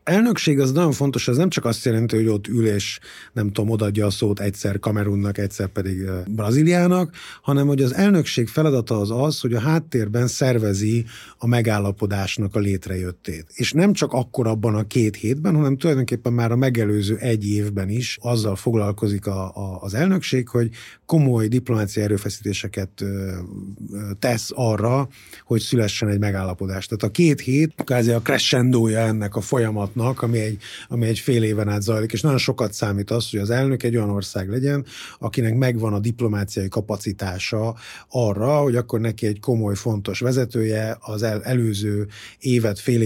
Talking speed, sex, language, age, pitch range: 165 wpm, male, Hungarian, 30-49, 105-125 Hz